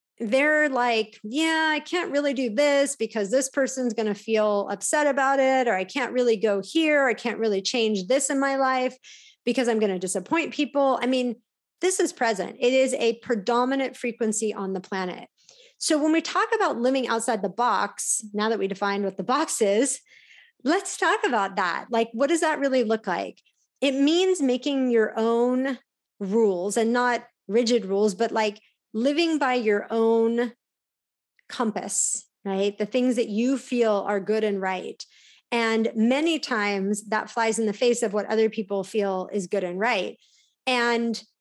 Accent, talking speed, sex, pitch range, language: American, 180 wpm, female, 210-265 Hz, English